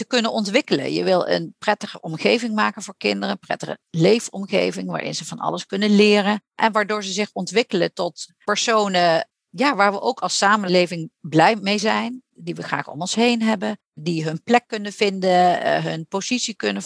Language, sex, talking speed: Dutch, female, 180 wpm